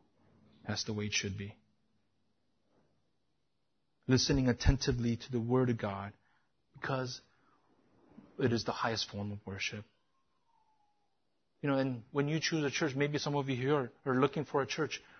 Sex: male